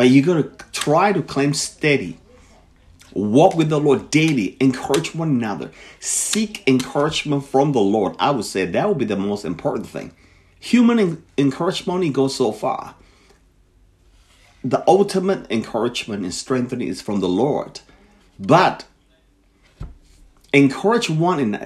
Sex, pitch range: male, 110-175 Hz